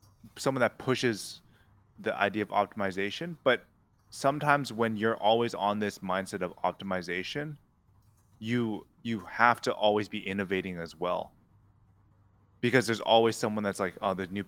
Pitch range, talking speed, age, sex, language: 95-105 Hz, 145 wpm, 20-39, male, English